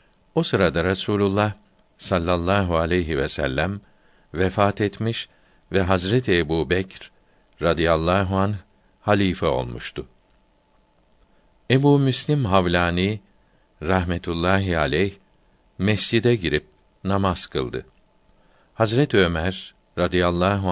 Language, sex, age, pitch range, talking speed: Turkish, male, 60-79, 90-105 Hz, 85 wpm